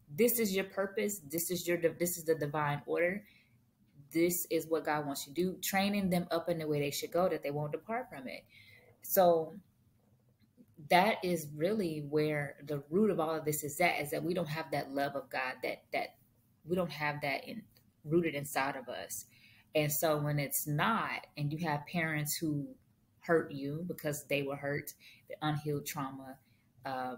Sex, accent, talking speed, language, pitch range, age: female, American, 190 wpm, English, 135-160 Hz, 20-39